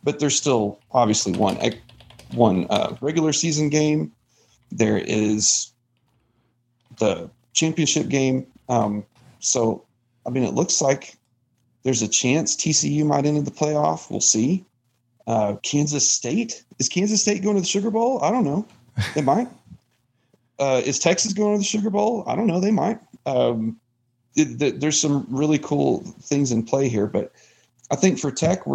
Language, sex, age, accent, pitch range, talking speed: English, male, 40-59, American, 115-145 Hz, 160 wpm